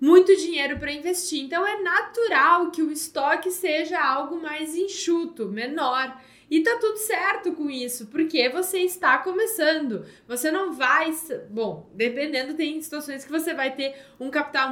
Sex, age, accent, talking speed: female, 10-29, Brazilian, 155 wpm